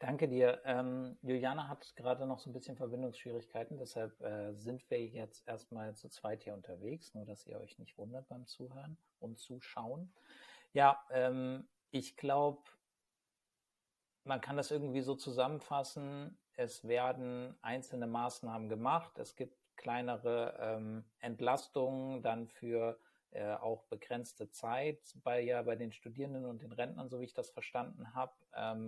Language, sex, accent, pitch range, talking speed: German, male, German, 115-135 Hz, 150 wpm